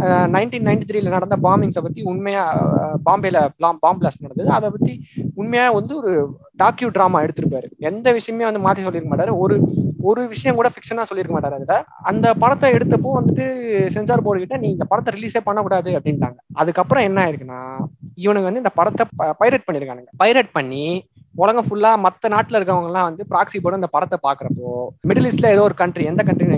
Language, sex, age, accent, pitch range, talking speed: Tamil, male, 20-39, native, 165-220 Hz, 120 wpm